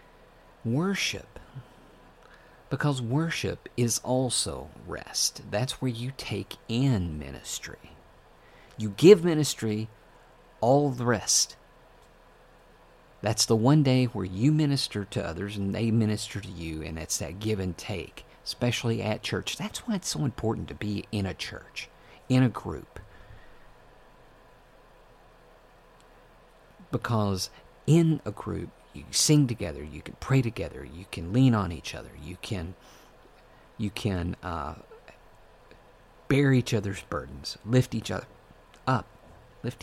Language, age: English, 50-69